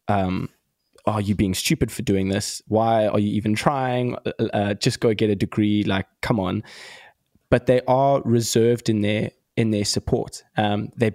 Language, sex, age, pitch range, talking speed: English, male, 20-39, 105-125 Hz, 180 wpm